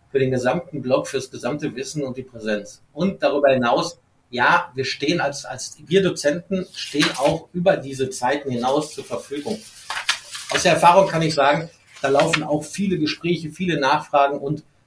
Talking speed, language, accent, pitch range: 165 wpm, German, German, 140-185 Hz